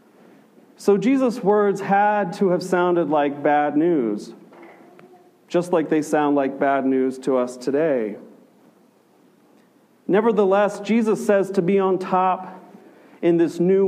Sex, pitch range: male, 165-200 Hz